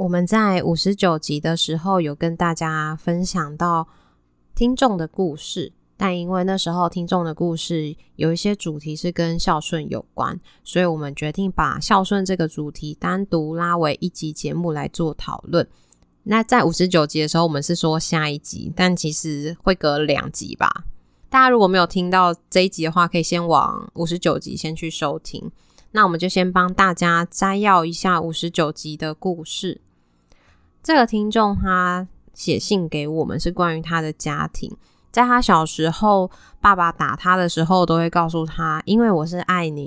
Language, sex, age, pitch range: Chinese, female, 20-39, 160-190 Hz